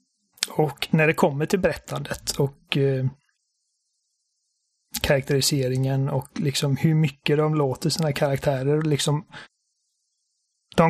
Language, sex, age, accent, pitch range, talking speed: Swedish, male, 30-49, native, 140-165 Hz, 105 wpm